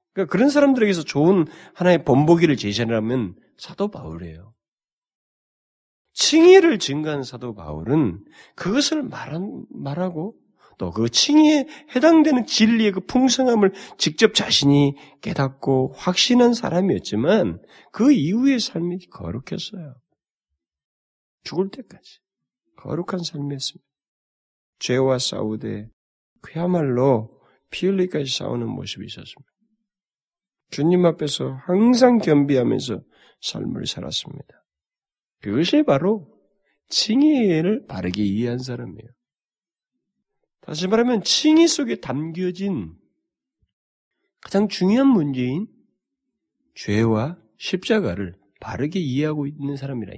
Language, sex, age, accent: Korean, male, 40-59, native